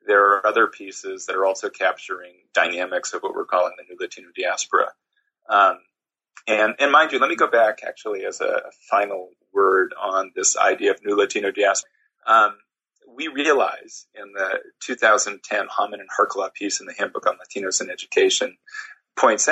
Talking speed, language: 175 wpm, English